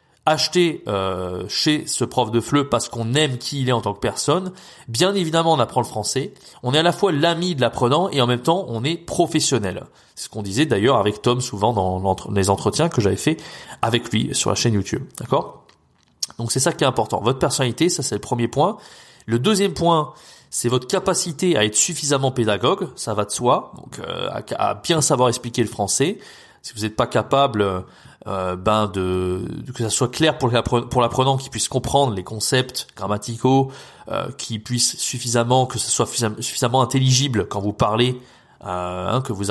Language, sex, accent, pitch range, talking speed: French, male, French, 105-140 Hz, 195 wpm